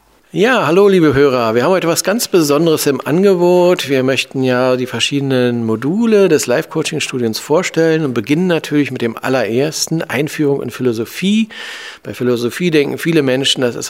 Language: German